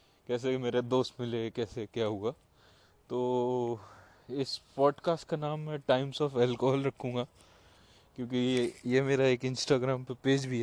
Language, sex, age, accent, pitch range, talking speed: Hindi, male, 20-39, native, 115-135 Hz, 145 wpm